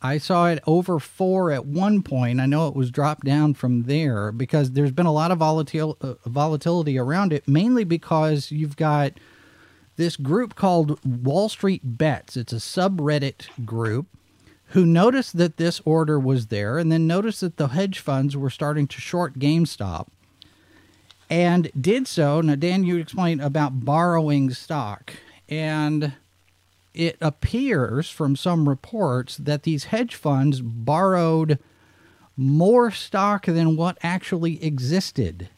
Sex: male